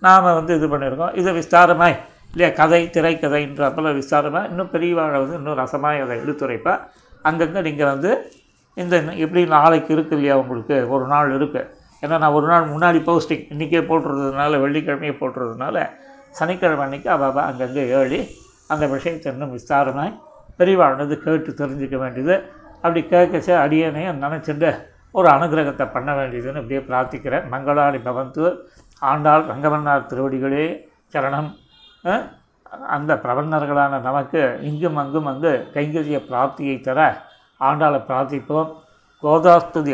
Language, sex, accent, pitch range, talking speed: Tamil, male, native, 135-160 Hz, 120 wpm